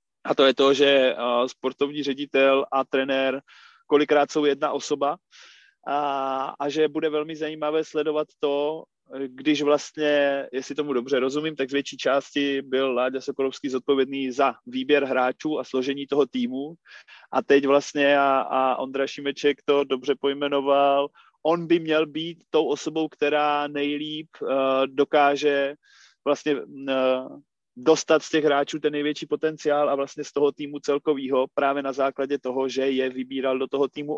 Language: Czech